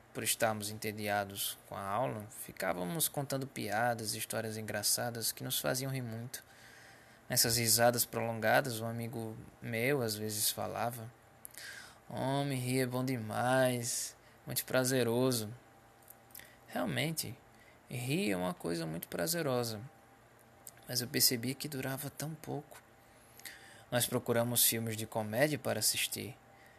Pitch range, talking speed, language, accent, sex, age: 110-130 Hz, 120 wpm, Portuguese, Brazilian, male, 20-39